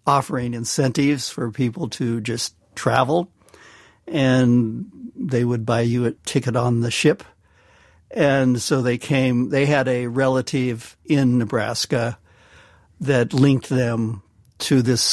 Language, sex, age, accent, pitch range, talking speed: English, male, 60-79, American, 120-140 Hz, 125 wpm